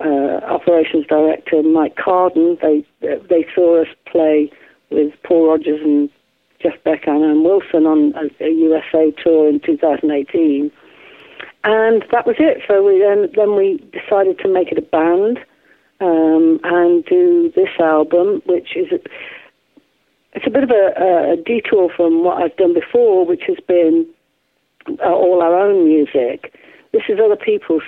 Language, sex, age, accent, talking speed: English, female, 50-69, British, 155 wpm